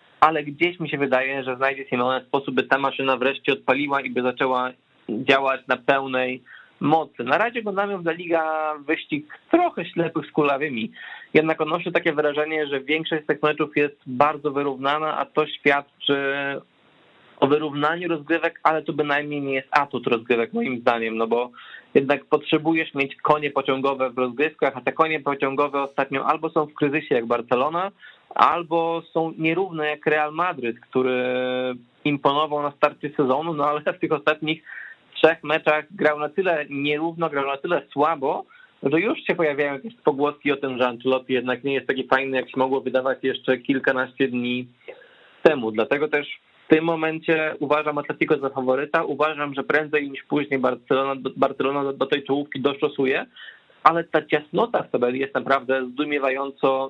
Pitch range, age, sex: 135-155 Hz, 20-39, male